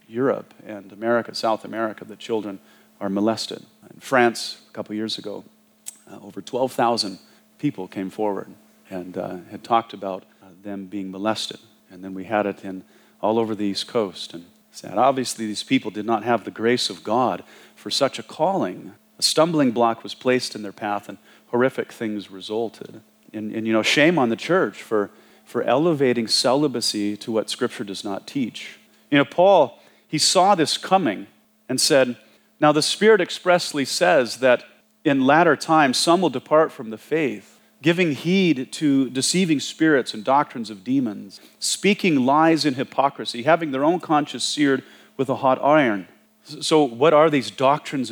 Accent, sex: American, male